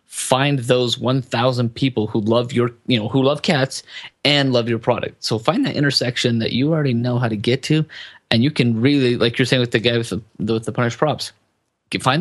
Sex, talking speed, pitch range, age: male, 220 wpm, 115-130 Hz, 30-49